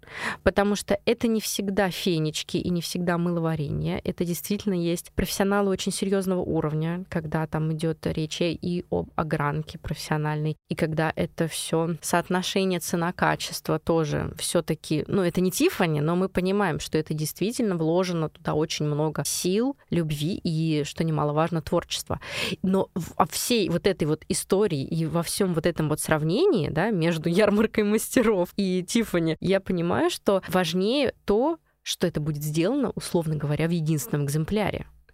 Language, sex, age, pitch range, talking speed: Russian, female, 20-39, 160-200 Hz, 150 wpm